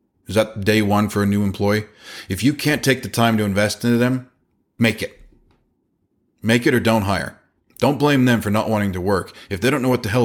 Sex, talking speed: male, 235 wpm